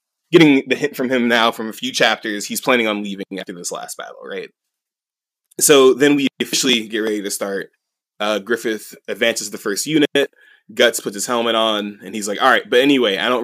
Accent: American